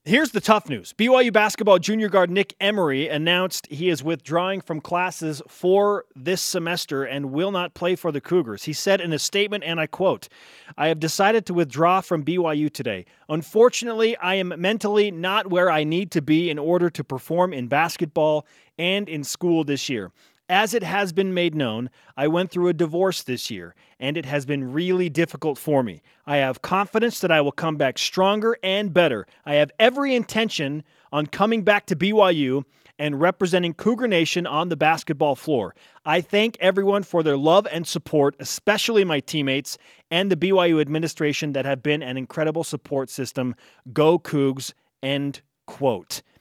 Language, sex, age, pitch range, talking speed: English, male, 30-49, 150-190 Hz, 180 wpm